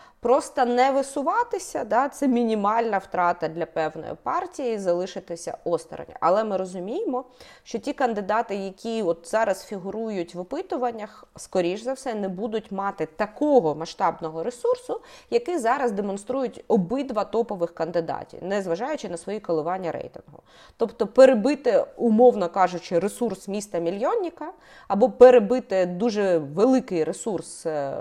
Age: 20-39